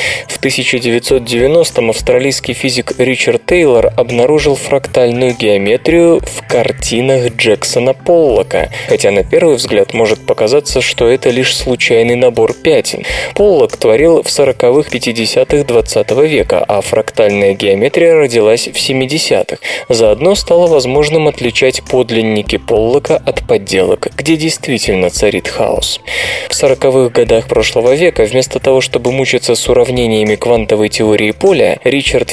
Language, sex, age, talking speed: Russian, male, 20-39, 120 wpm